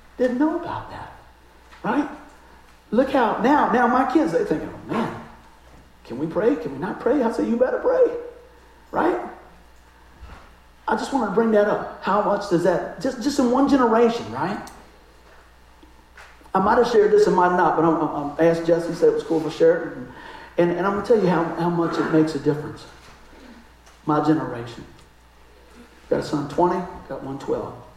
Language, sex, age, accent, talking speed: English, male, 50-69, American, 185 wpm